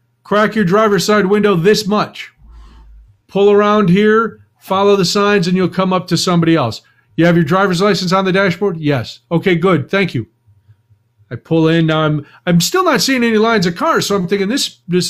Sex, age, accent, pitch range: male, 40-59, American, 125-195 Hz